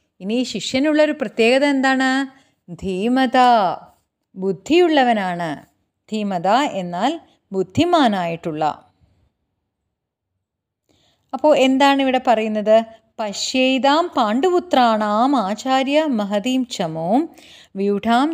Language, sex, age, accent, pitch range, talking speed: Malayalam, female, 30-49, native, 190-270 Hz, 60 wpm